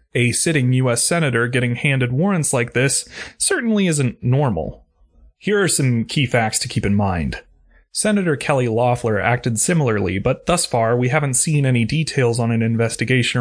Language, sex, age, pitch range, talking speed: English, male, 30-49, 115-140 Hz, 165 wpm